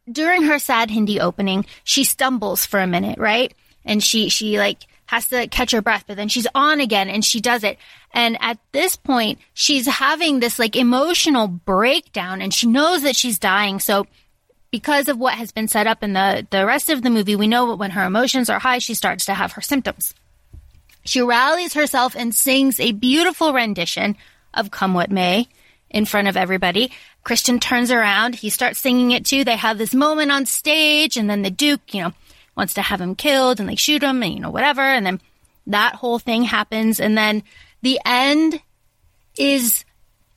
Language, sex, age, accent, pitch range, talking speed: English, female, 20-39, American, 210-270 Hz, 200 wpm